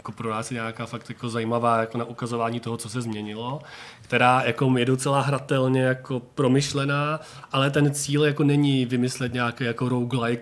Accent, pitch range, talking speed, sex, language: native, 120-135 Hz, 180 wpm, male, Czech